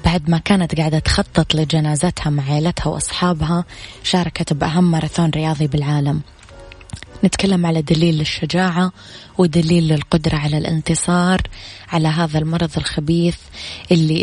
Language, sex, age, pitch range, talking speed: Arabic, female, 20-39, 150-165 Hz, 115 wpm